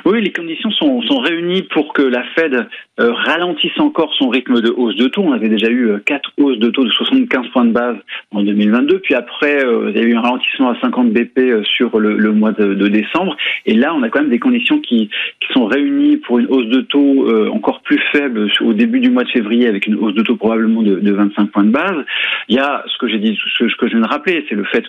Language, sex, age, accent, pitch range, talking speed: French, male, 40-59, French, 110-180 Hz, 265 wpm